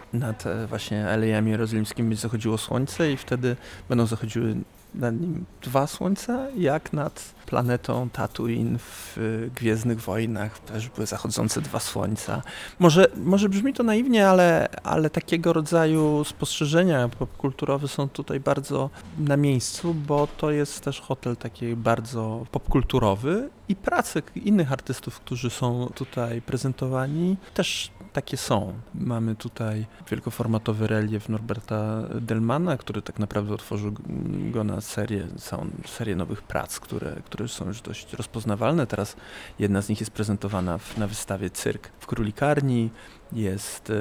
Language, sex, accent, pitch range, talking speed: Polish, male, native, 110-140 Hz, 130 wpm